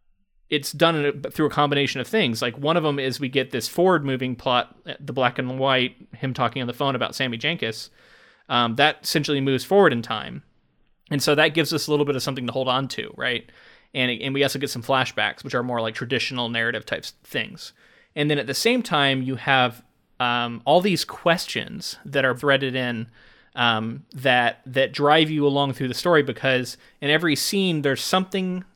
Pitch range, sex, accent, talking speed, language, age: 125-150 Hz, male, American, 205 wpm, English, 30-49